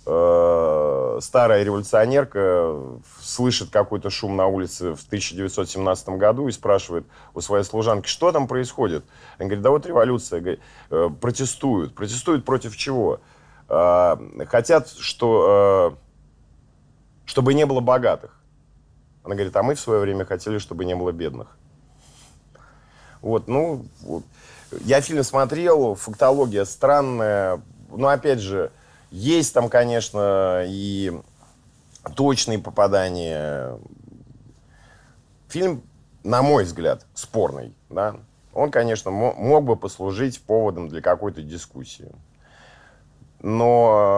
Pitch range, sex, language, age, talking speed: 100-135 Hz, male, Russian, 30-49, 105 wpm